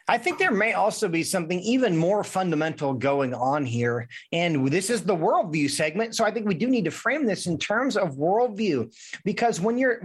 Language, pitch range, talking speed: English, 160-225 Hz, 210 wpm